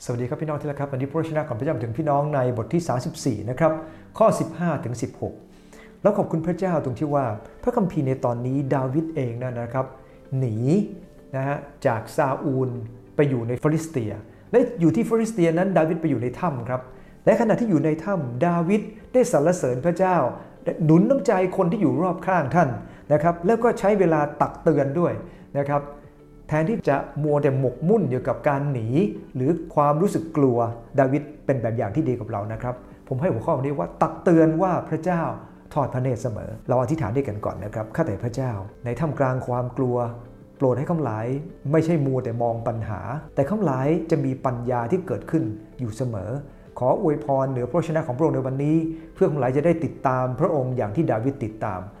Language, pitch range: English, 125-165 Hz